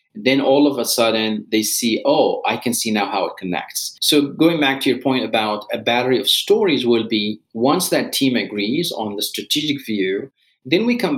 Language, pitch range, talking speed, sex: English, 110-140 Hz, 210 wpm, male